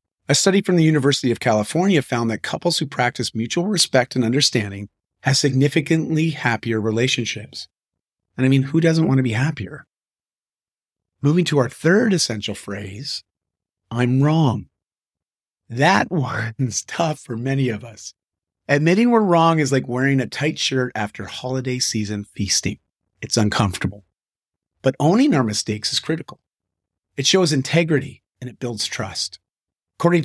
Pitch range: 110-155 Hz